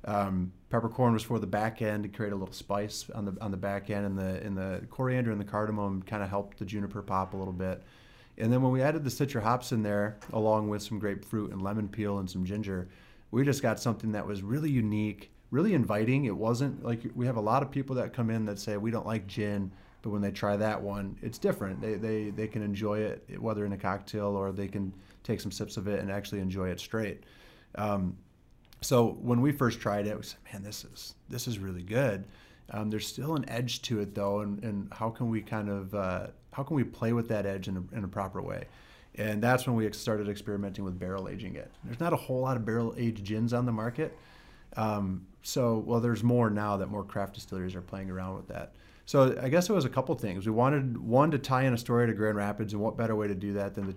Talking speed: 250 wpm